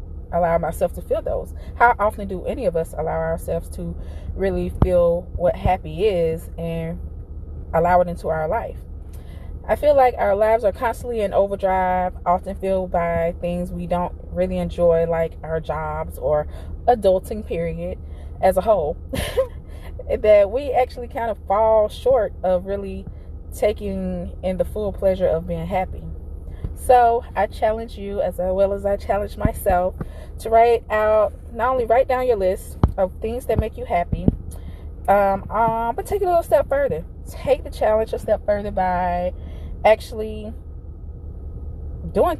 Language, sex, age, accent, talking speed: English, female, 20-39, American, 155 wpm